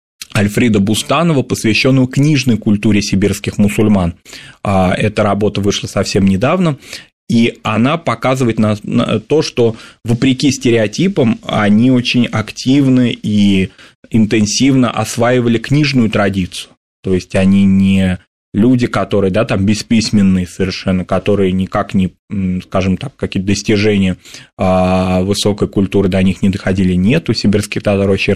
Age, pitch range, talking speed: 20-39, 100-120 Hz, 115 wpm